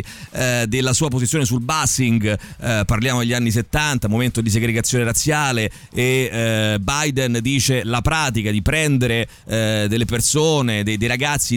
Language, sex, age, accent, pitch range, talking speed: Italian, male, 30-49, native, 115-140 Hz, 150 wpm